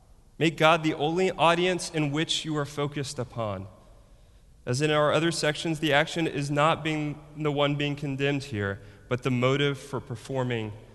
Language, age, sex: English, 30-49, male